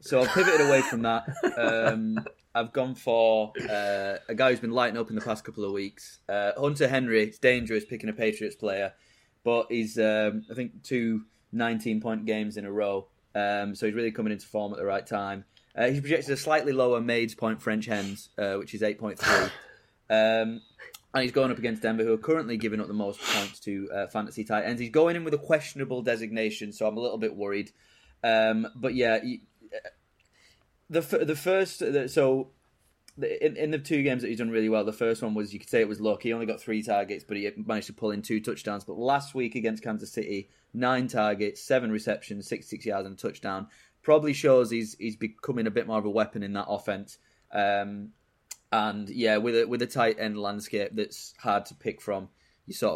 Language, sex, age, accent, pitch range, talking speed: English, male, 20-39, British, 105-120 Hz, 210 wpm